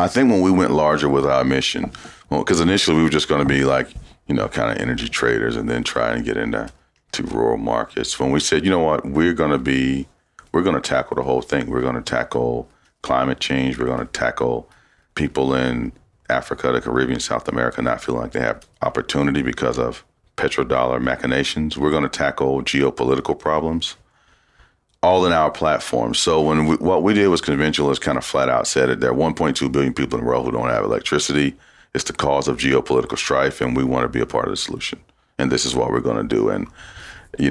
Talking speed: 225 wpm